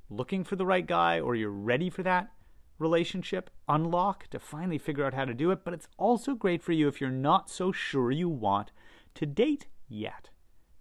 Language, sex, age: English, male, 30-49